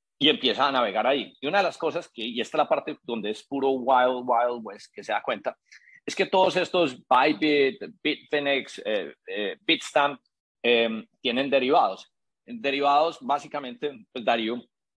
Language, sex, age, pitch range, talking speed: Spanish, male, 30-49, 125-165 Hz, 170 wpm